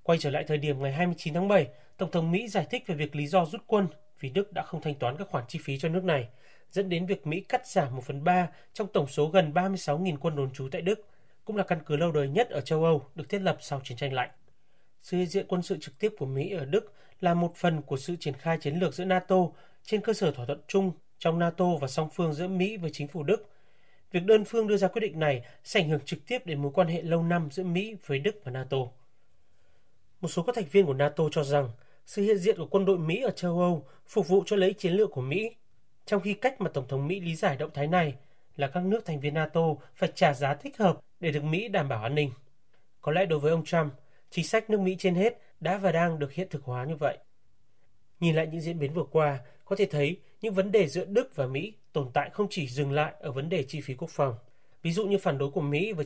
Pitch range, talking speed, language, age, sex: 145-190 Hz, 265 wpm, Vietnamese, 30-49, male